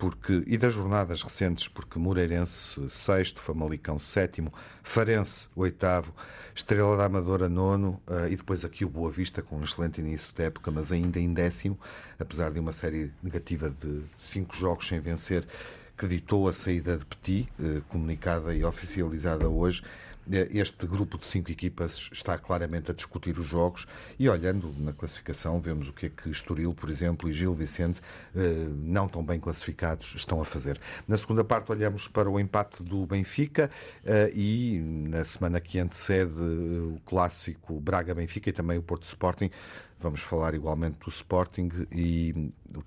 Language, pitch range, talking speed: Portuguese, 80-95 Hz, 160 wpm